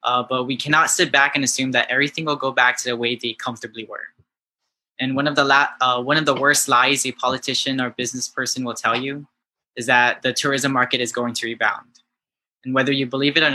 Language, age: English, 10-29